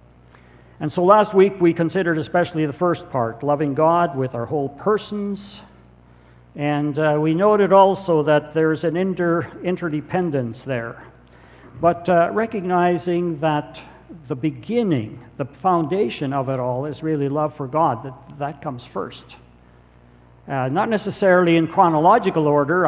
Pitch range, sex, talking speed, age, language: 115-165 Hz, male, 140 wpm, 60-79, English